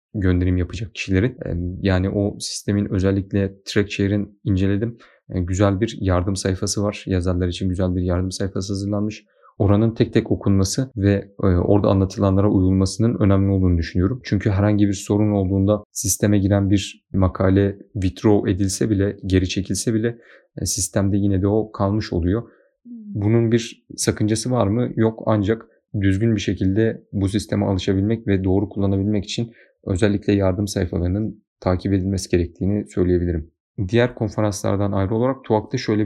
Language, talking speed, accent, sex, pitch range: Turkish, 140 wpm, native, male, 95-110 Hz